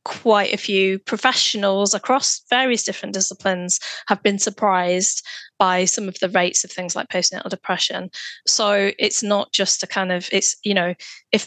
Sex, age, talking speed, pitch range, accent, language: female, 20-39, 165 wpm, 180-205 Hz, British, English